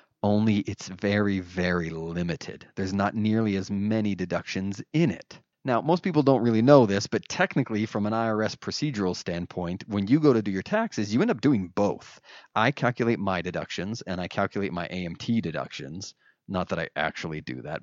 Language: English